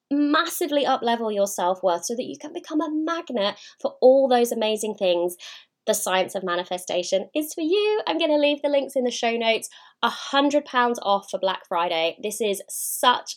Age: 20-39